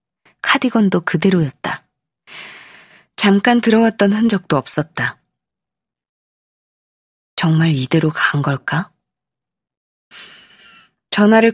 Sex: female